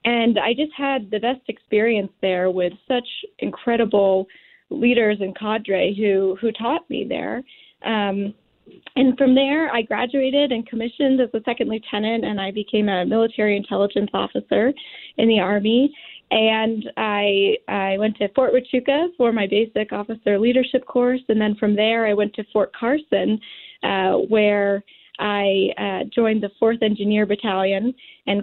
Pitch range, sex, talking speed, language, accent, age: 200-240 Hz, female, 155 wpm, English, American, 10-29